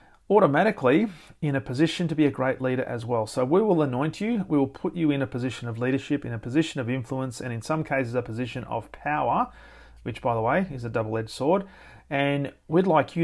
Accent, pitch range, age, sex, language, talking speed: Australian, 125-150 Hz, 40-59, male, English, 225 wpm